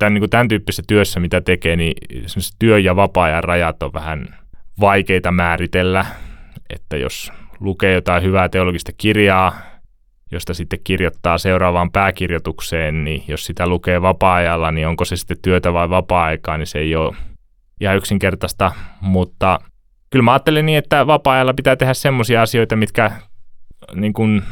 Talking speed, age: 140 wpm, 20-39